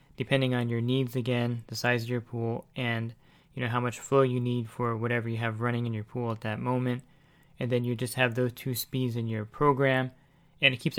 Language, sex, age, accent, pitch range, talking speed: English, male, 20-39, American, 120-135 Hz, 235 wpm